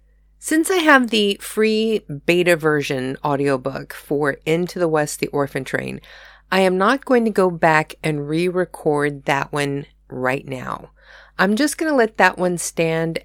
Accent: American